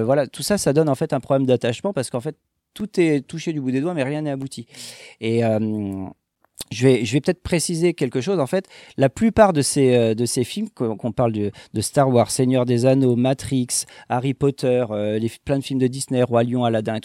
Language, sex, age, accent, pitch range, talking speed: French, male, 40-59, French, 110-145 Hz, 230 wpm